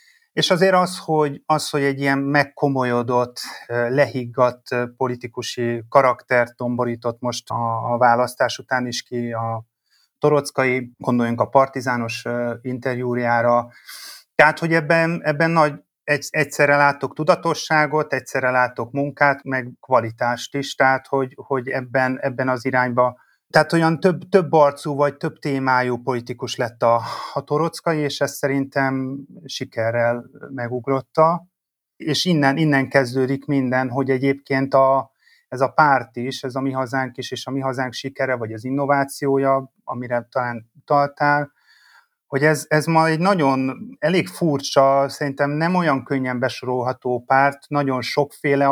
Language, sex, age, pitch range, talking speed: Hungarian, male, 30-49, 125-145 Hz, 135 wpm